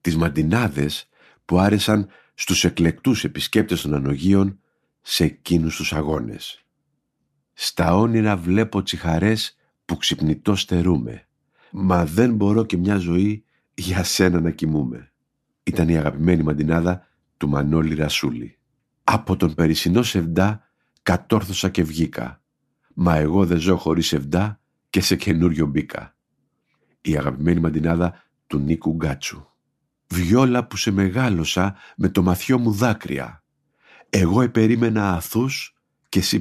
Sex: male